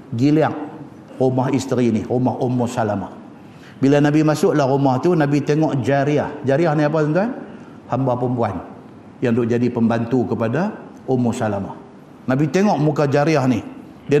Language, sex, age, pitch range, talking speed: Malay, male, 50-69, 120-150 Hz, 145 wpm